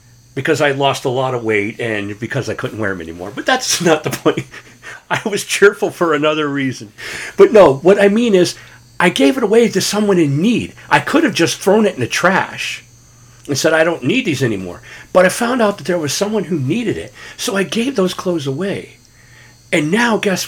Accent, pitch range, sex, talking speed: American, 120-190 Hz, male, 220 wpm